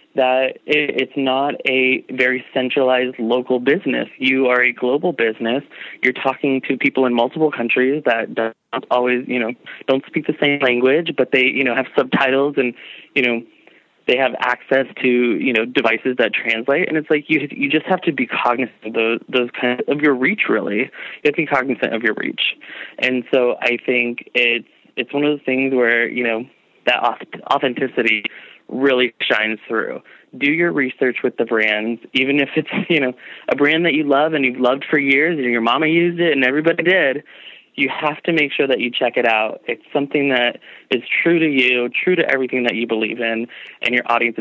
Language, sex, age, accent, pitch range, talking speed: English, male, 20-39, American, 120-145 Hz, 200 wpm